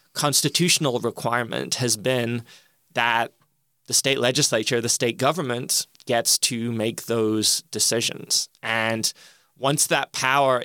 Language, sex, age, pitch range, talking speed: English, male, 20-39, 115-140 Hz, 115 wpm